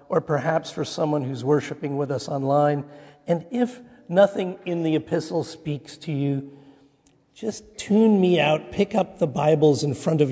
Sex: male